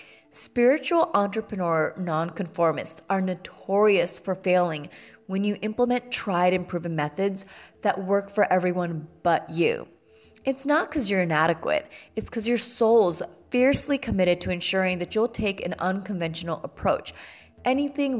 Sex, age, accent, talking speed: female, 20-39, American, 130 wpm